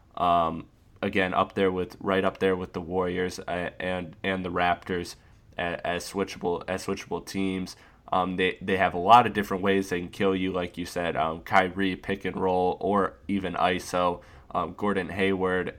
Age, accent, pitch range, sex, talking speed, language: 20-39, American, 90-100 Hz, male, 185 wpm, English